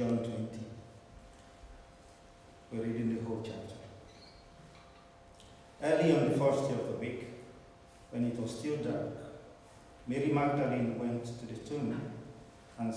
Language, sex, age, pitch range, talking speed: English, male, 50-69, 100-135 Hz, 125 wpm